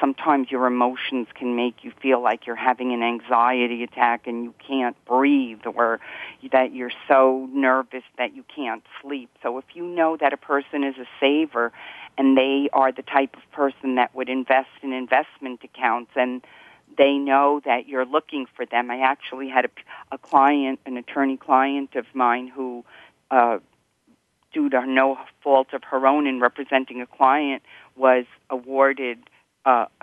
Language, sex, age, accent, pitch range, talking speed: English, female, 50-69, American, 125-145 Hz, 170 wpm